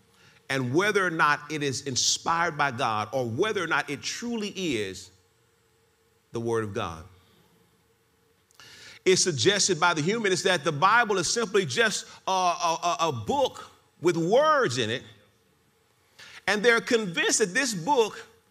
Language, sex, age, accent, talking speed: English, male, 40-59, American, 145 wpm